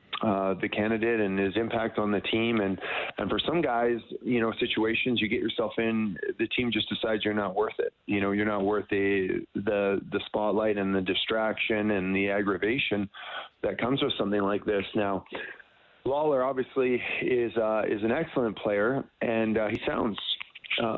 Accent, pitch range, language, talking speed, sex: American, 100-120 Hz, English, 185 wpm, male